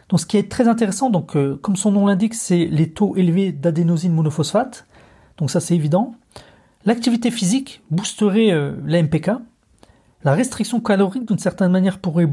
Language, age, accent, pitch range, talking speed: French, 30-49, French, 165-220 Hz, 170 wpm